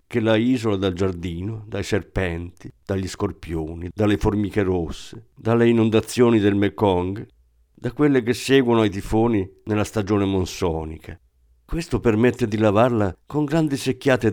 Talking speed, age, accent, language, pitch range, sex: 135 wpm, 50-69, native, Italian, 90-125 Hz, male